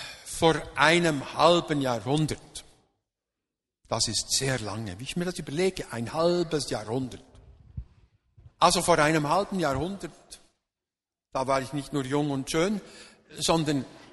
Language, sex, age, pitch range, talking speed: German, male, 60-79, 125-170 Hz, 125 wpm